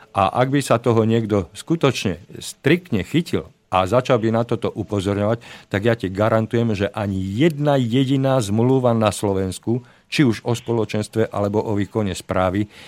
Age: 50-69